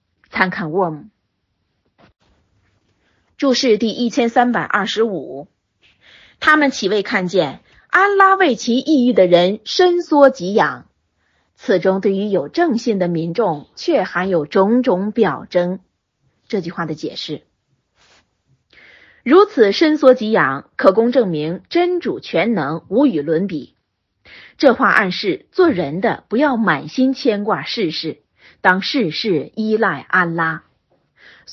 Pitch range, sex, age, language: 165-260 Hz, female, 30-49, Chinese